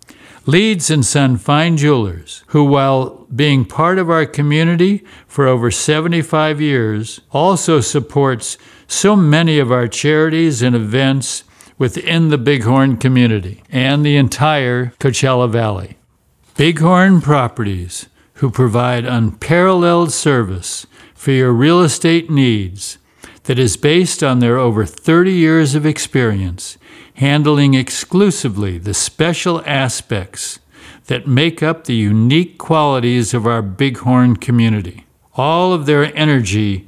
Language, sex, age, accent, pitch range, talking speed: English, male, 60-79, American, 120-155 Hz, 120 wpm